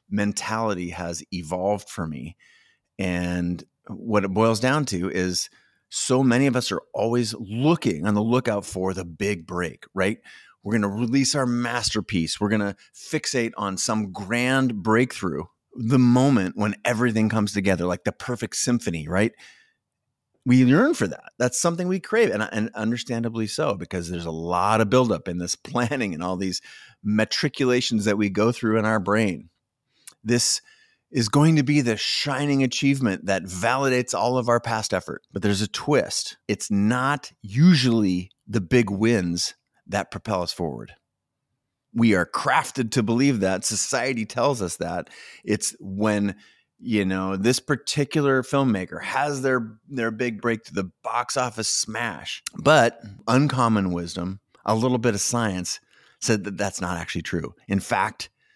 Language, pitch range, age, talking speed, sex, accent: English, 100-125 Hz, 30-49, 160 wpm, male, American